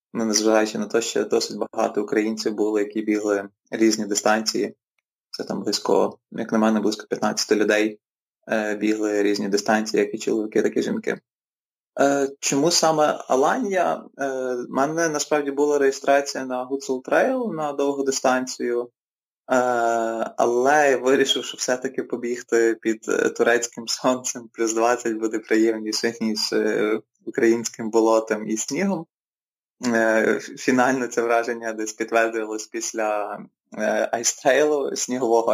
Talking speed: 130 wpm